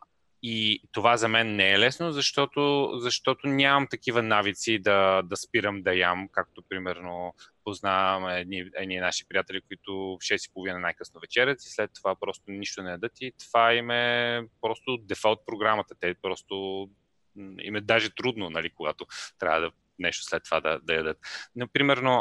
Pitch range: 95-120 Hz